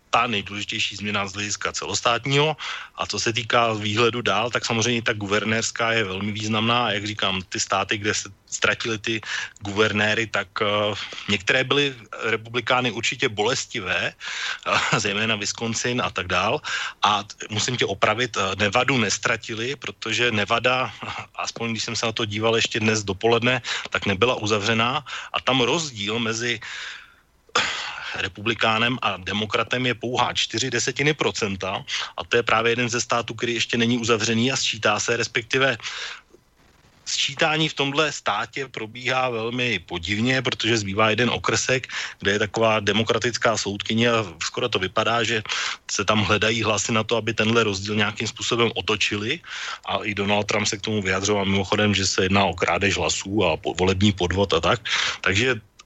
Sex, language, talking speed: male, Slovak, 155 wpm